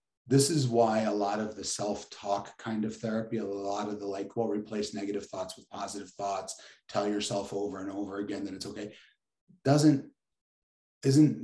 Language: English